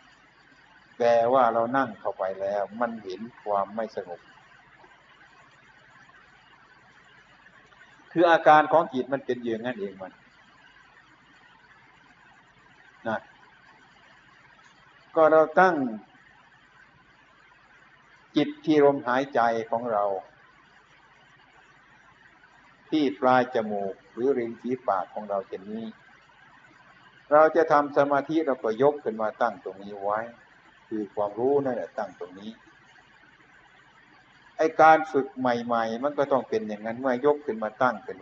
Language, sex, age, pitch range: Thai, male, 60-79, 110-150 Hz